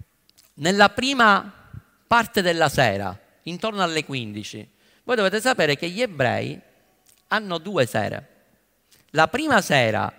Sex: male